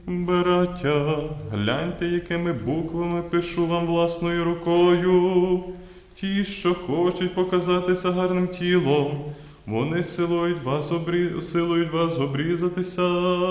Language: Ukrainian